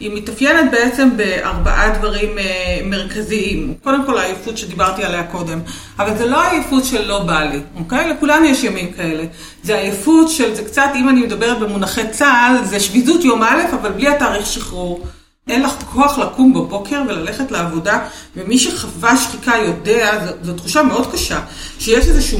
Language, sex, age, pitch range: Hebrew, female, 40-59, 195-265 Hz